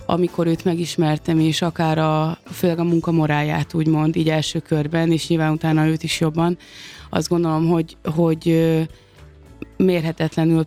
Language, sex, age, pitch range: Hungarian, female, 20-39, 155-165 Hz